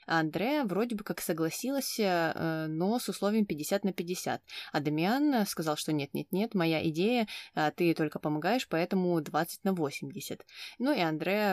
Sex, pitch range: female, 160-205 Hz